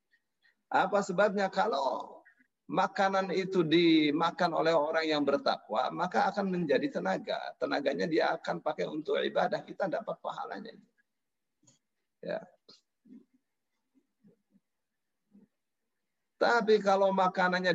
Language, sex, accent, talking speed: Indonesian, male, native, 90 wpm